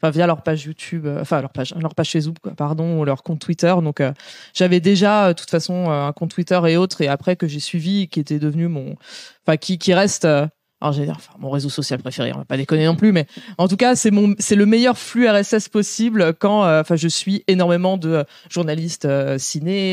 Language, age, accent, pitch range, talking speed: French, 20-39, French, 150-190 Hz, 235 wpm